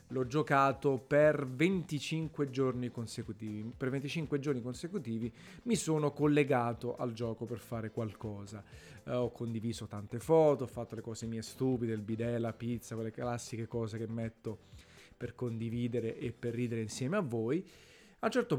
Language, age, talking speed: Italian, 30-49, 160 wpm